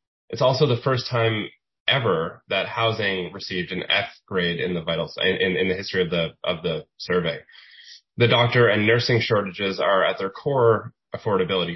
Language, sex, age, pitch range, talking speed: English, male, 20-39, 100-125 Hz, 175 wpm